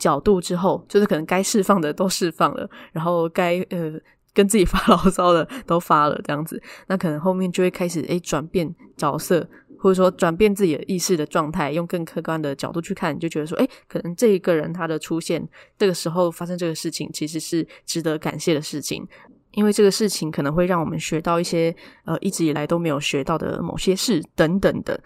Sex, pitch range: female, 160-195 Hz